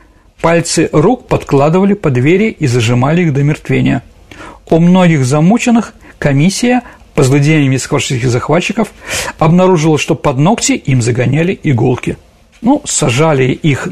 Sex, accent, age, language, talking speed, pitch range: male, native, 50-69, Russian, 120 wpm, 140-190 Hz